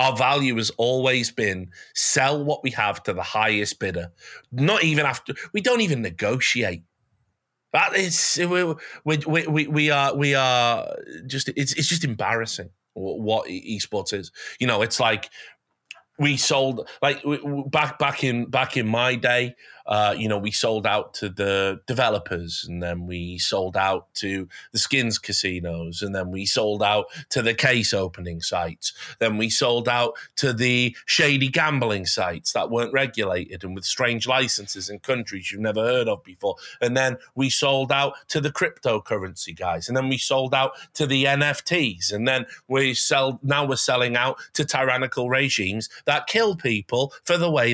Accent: British